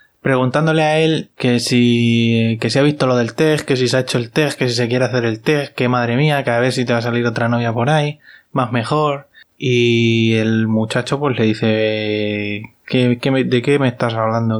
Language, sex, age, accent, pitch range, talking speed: Spanish, male, 20-39, Spanish, 115-140 Hz, 225 wpm